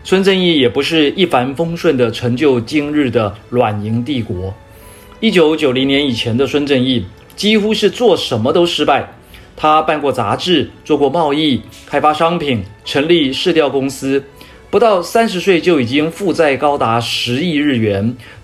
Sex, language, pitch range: male, Chinese, 115-165 Hz